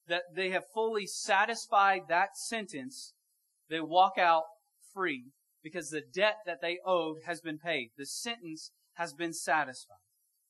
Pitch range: 165-225 Hz